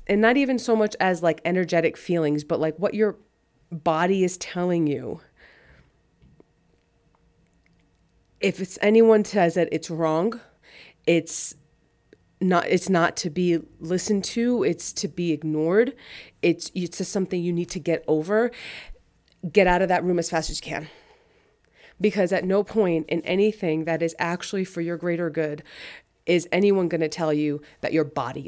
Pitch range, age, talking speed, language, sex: 155-190 Hz, 30-49, 160 wpm, English, female